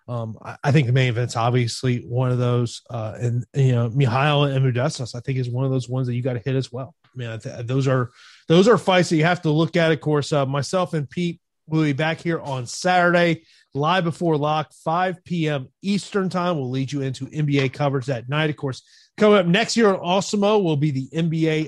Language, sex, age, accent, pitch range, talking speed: English, male, 30-49, American, 135-175 Hz, 240 wpm